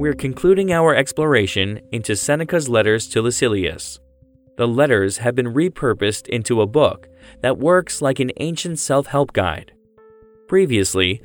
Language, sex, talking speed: English, male, 135 wpm